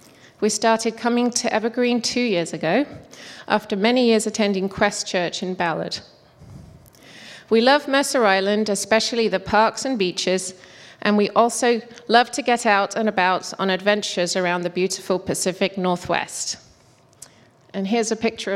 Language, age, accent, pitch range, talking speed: English, 30-49, British, 185-230 Hz, 145 wpm